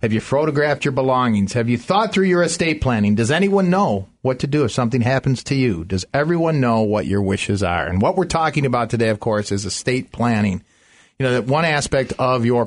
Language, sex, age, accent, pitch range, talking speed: English, male, 40-59, American, 115-150 Hz, 225 wpm